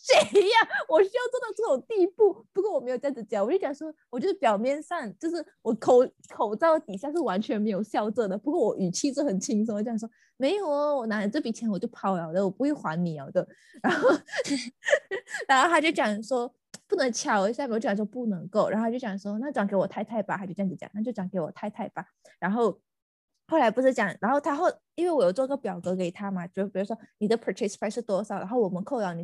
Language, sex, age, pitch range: Chinese, female, 20-39, 195-275 Hz